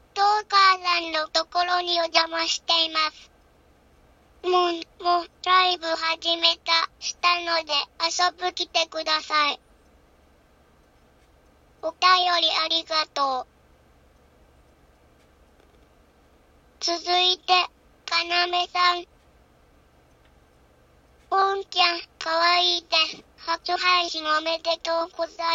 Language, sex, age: Japanese, male, 20-39